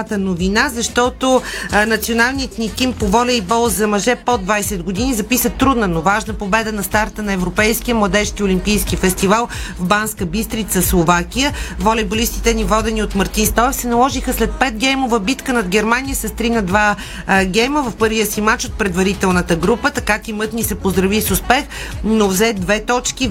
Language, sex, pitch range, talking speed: Bulgarian, female, 195-230 Hz, 170 wpm